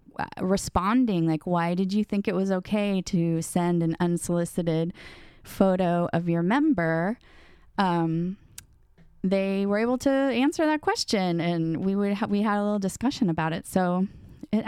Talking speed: 155 wpm